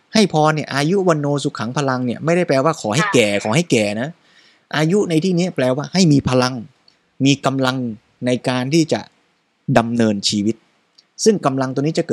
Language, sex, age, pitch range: Thai, male, 20-39, 110-145 Hz